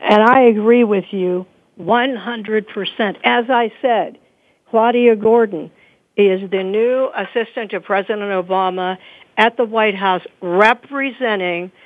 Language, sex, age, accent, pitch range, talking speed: English, female, 60-79, American, 180-235 Hz, 115 wpm